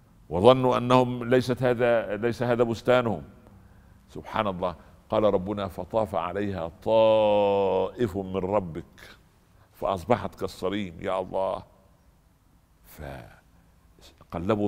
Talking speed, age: 85 wpm, 60-79